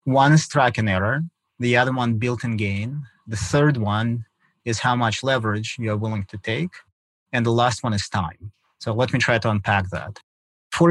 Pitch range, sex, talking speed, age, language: 105-125 Hz, male, 195 wpm, 30-49, English